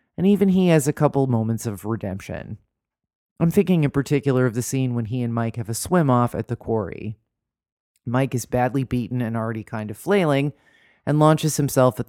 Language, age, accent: English, 30-49, American